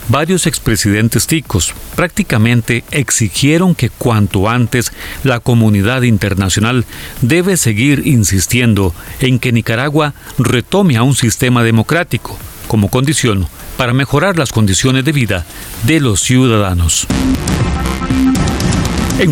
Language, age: Spanish, 40-59